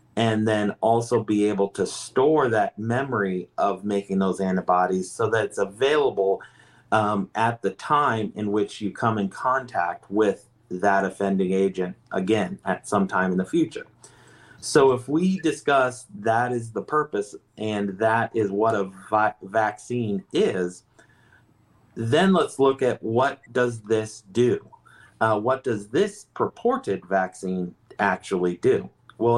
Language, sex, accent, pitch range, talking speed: English, male, American, 100-120 Hz, 145 wpm